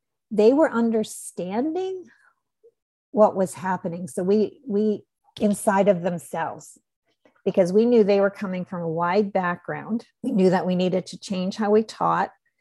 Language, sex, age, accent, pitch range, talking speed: English, female, 50-69, American, 185-220 Hz, 150 wpm